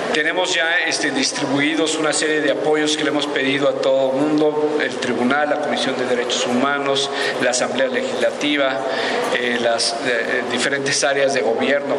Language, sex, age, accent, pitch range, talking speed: Spanish, male, 50-69, Mexican, 130-155 Hz, 155 wpm